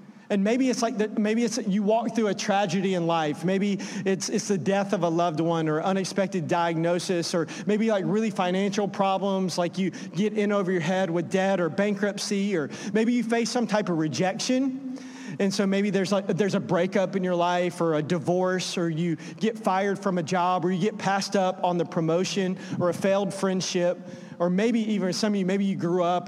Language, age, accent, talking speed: English, 40-59, American, 215 wpm